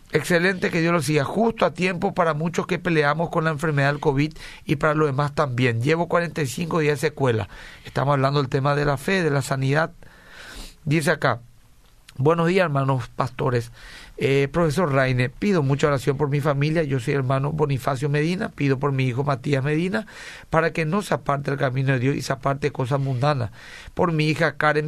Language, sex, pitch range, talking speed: Spanish, male, 140-165 Hz, 195 wpm